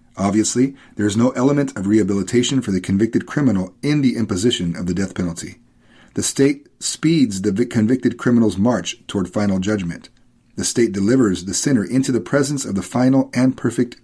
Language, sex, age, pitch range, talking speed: English, male, 40-59, 100-130 Hz, 175 wpm